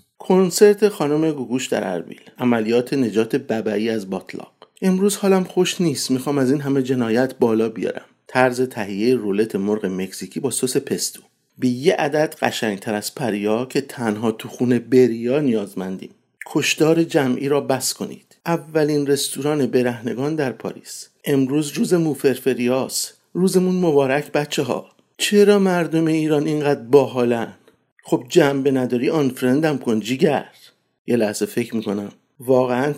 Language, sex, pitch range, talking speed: Persian, male, 120-160 Hz, 135 wpm